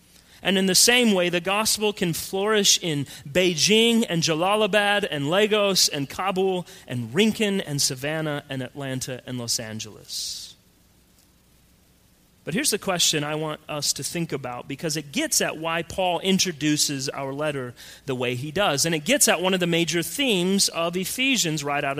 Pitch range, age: 150-205 Hz, 30-49